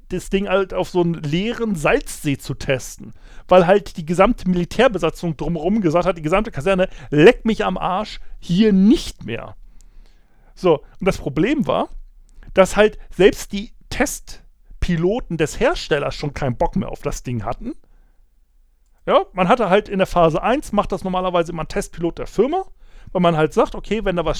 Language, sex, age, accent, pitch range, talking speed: German, male, 40-59, German, 160-200 Hz, 175 wpm